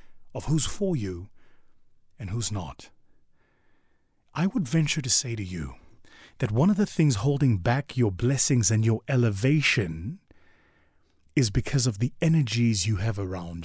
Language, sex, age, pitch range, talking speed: English, male, 30-49, 105-155 Hz, 150 wpm